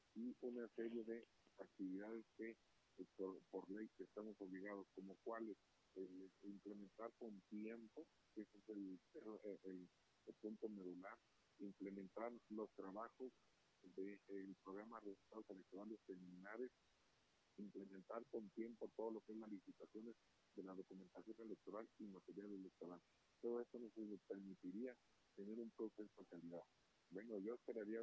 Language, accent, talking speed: Spanish, Mexican, 135 wpm